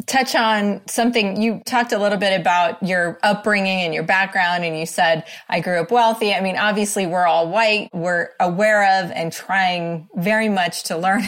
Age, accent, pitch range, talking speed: 30-49, American, 170-210 Hz, 190 wpm